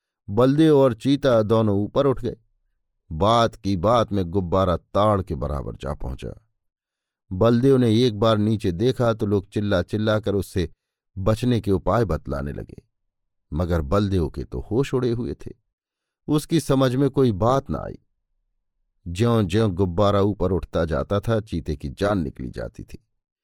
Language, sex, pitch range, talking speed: Hindi, male, 95-130 Hz, 160 wpm